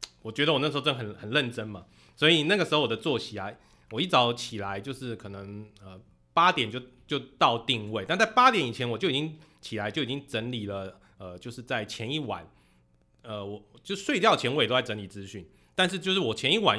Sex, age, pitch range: male, 30-49, 100-140 Hz